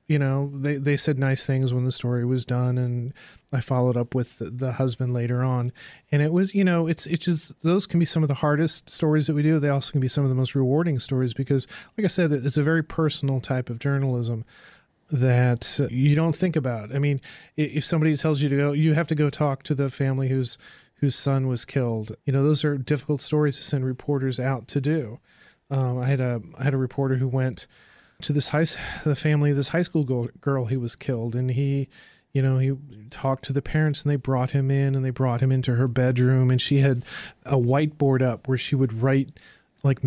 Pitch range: 125-145 Hz